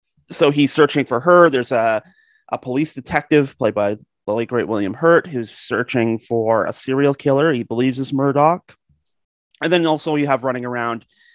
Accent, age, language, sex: American, 30-49, English, male